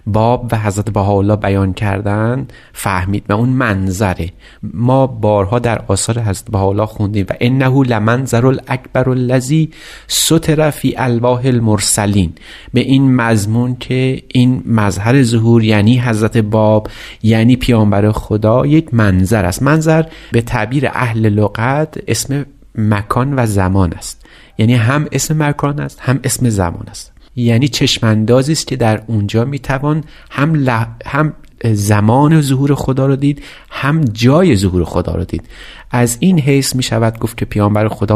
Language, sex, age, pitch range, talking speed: Persian, male, 30-49, 110-140 Hz, 145 wpm